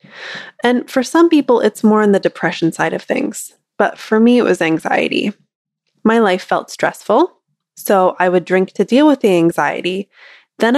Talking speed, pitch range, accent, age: 180 wpm, 180-235 Hz, American, 20-39